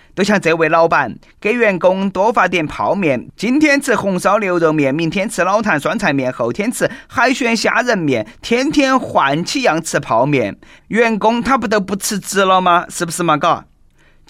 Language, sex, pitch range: Chinese, male, 165-220 Hz